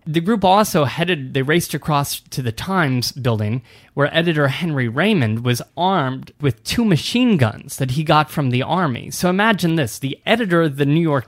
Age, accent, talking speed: 30-49, American, 190 wpm